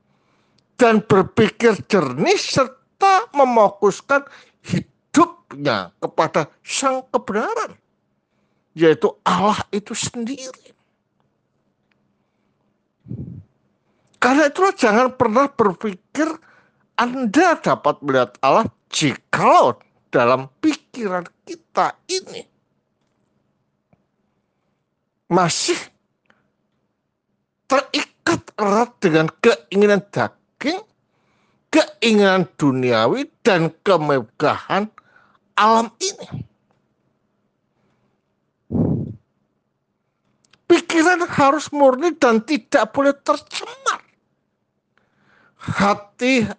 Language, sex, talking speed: Malay, male, 60 wpm